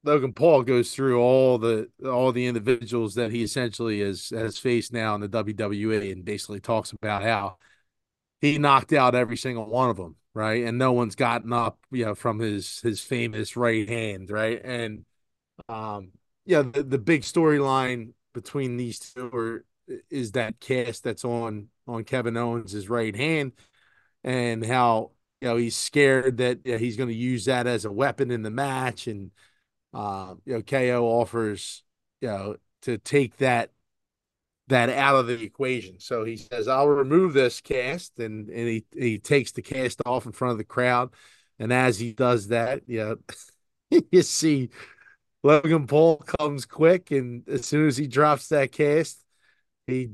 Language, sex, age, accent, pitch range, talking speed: English, male, 30-49, American, 115-135 Hz, 170 wpm